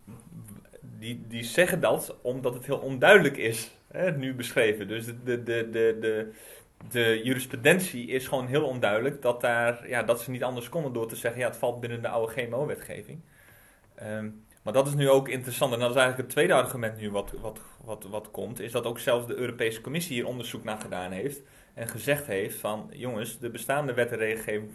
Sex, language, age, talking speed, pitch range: male, Dutch, 30-49, 205 wpm, 115-140 Hz